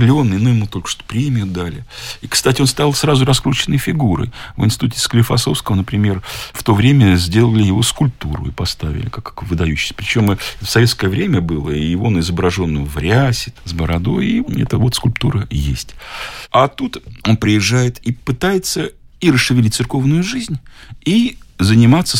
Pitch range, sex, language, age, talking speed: 95-135 Hz, male, Russian, 50-69, 155 wpm